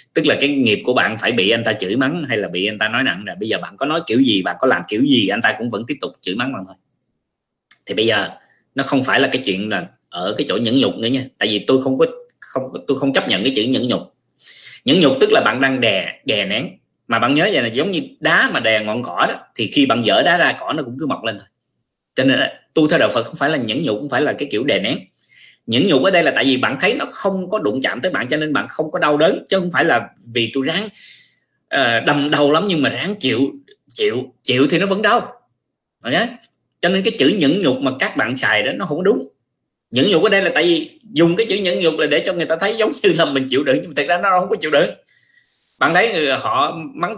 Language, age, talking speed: Vietnamese, 20-39, 285 wpm